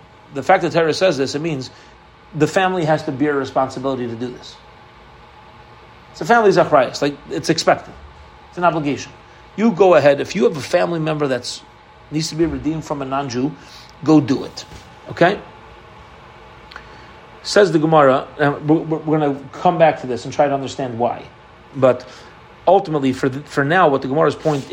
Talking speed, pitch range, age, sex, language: 185 wpm, 135-170 Hz, 40-59, male, English